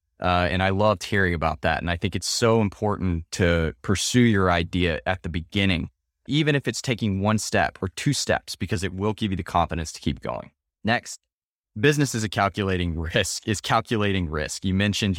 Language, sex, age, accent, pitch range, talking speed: English, male, 20-39, American, 85-105 Hz, 200 wpm